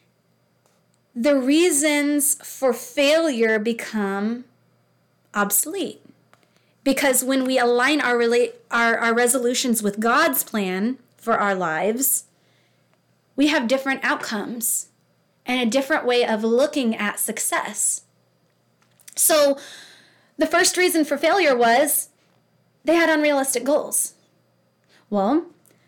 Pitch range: 225-285 Hz